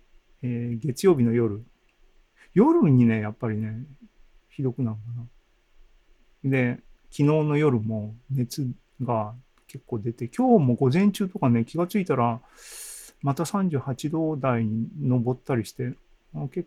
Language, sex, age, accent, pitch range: Japanese, male, 40-59, native, 115-150 Hz